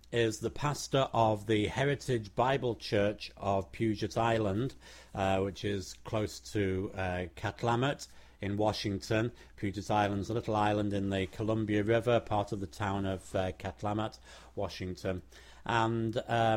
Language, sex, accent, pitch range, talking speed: English, male, British, 100-120 Hz, 140 wpm